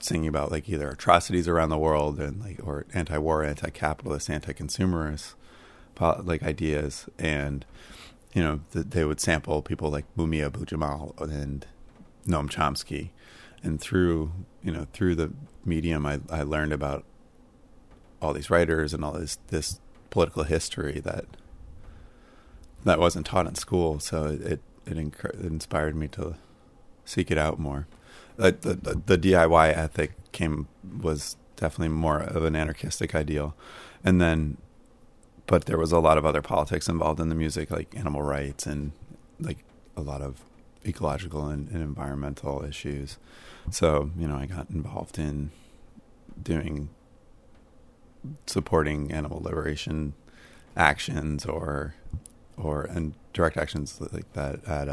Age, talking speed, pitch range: 30-49, 140 wpm, 75-80 Hz